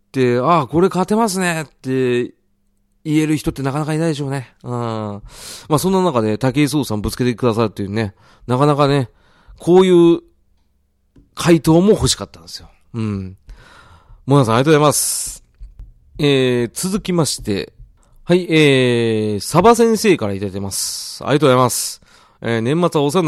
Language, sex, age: Japanese, male, 40-59